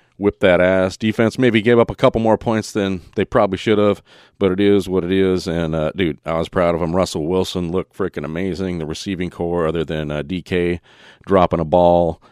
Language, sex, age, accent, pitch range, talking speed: English, male, 40-59, American, 80-95 Hz, 220 wpm